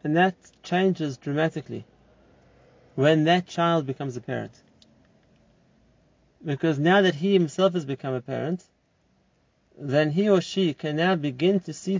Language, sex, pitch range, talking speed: English, male, 140-175 Hz, 140 wpm